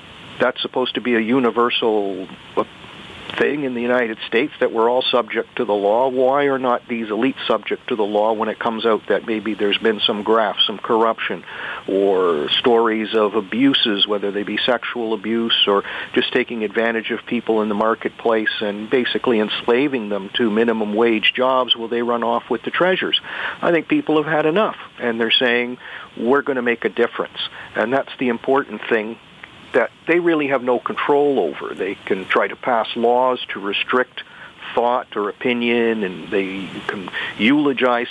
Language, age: English, 50-69